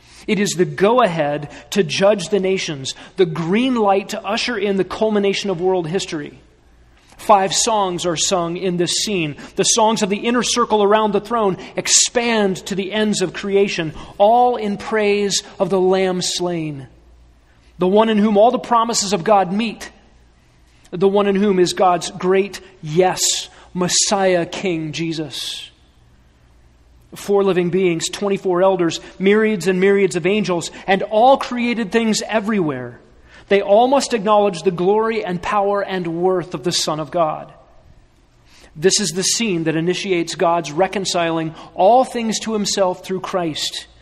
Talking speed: 155 wpm